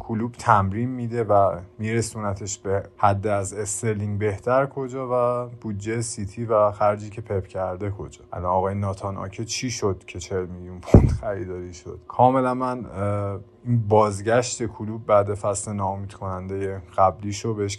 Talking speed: 150 wpm